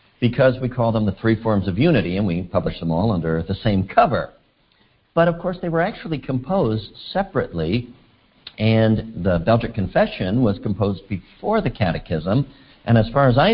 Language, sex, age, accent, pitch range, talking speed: English, male, 50-69, American, 95-145 Hz, 175 wpm